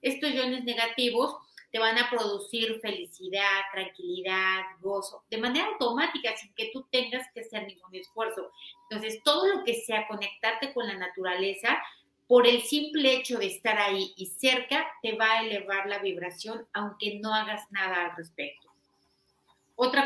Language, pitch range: Spanish, 200-245 Hz